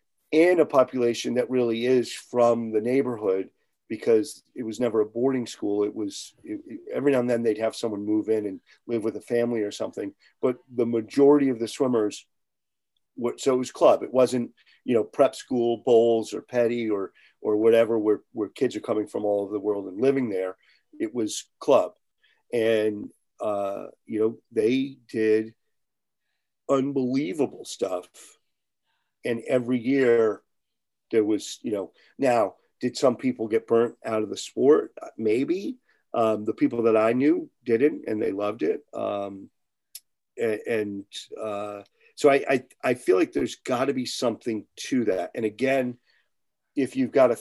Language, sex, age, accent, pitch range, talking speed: English, male, 40-59, American, 110-135 Hz, 170 wpm